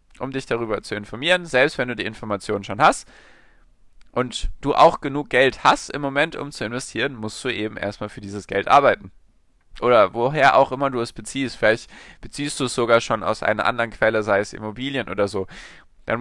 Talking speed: 200 wpm